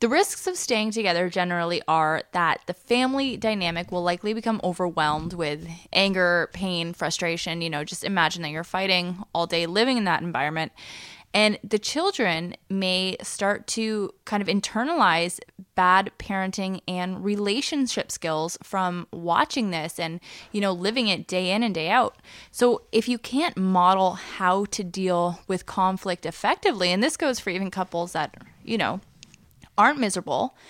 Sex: female